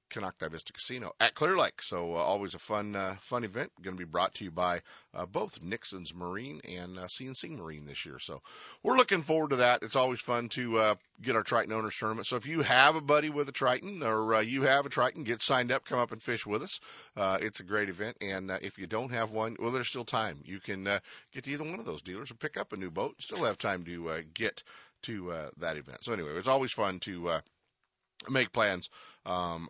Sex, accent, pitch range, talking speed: male, American, 95-125 Hz, 250 wpm